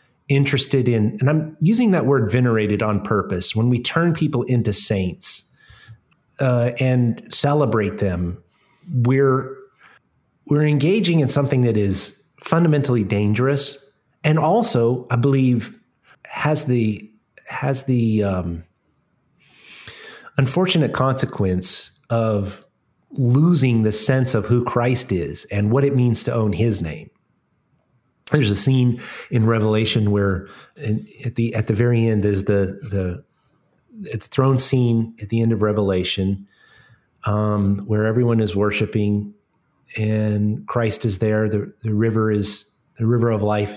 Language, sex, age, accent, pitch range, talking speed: English, male, 30-49, American, 100-130 Hz, 130 wpm